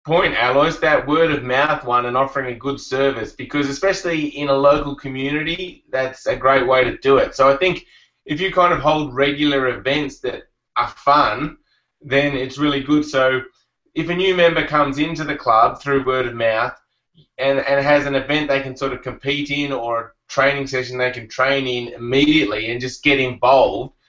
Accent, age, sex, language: Australian, 20-39, male, English